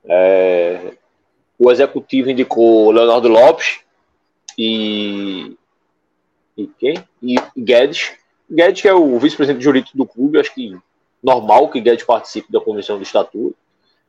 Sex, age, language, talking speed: male, 20-39, Portuguese, 125 wpm